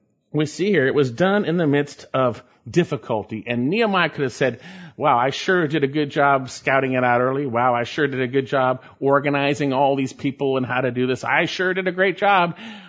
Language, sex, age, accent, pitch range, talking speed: English, male, 40-59, American, 125-190 Hz, 230 wpm